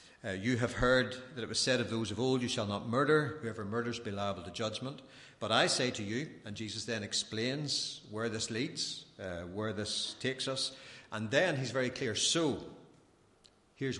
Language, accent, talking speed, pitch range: English, Irish, 195 wpm, 95-125 Hz